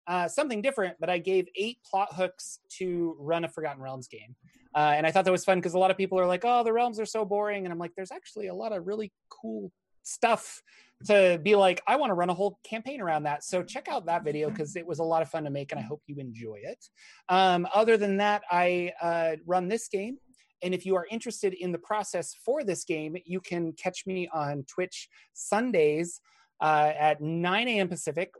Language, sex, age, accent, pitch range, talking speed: English, male, 30-49, American, 160-195 Hz, 230 wpm